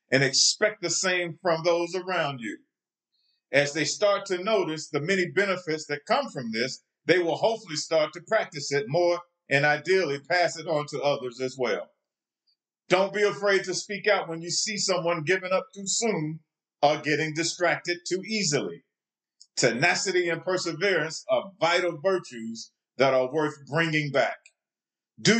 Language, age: English, 50-69